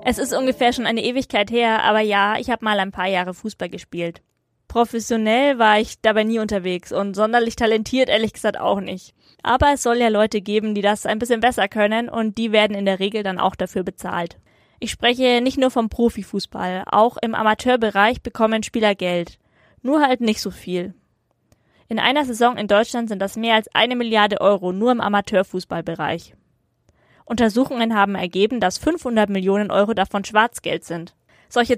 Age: 20-39